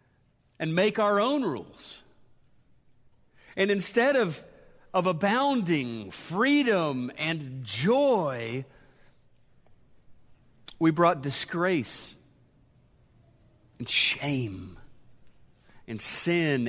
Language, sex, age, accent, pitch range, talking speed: English, male, 40-59, American, 130-190 Hz, 70 wpm